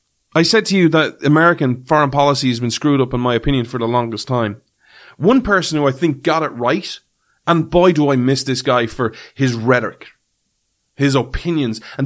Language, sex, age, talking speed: English, male, 30-49, 200 wpm